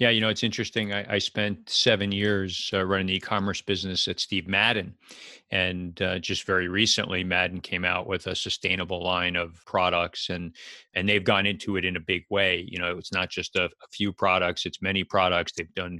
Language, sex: English, male